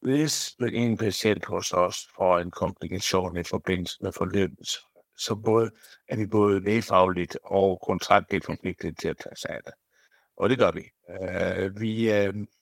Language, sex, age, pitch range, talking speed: Danish, male, 60-79, 95-110 Hz, 145 wpm